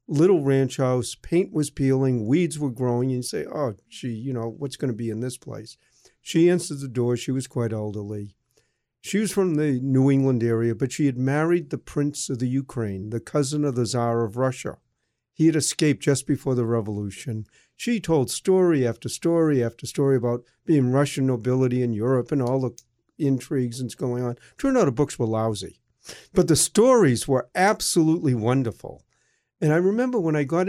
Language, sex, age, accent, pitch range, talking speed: English, male, 50-69, American, 125-170 Hz, 195 wpm